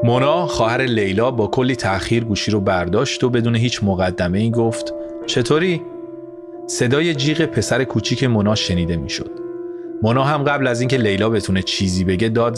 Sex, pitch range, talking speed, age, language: male, 110-145 Hz, 155 wpm, 30-49, Persian